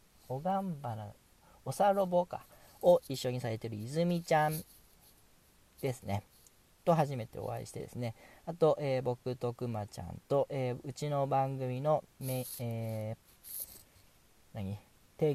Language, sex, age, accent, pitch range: Japanese, male, 40-59, native, 110-155 Hz